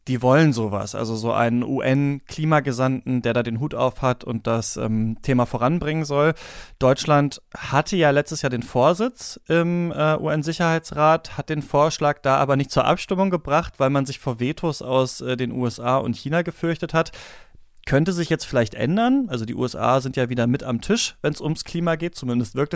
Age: 30-49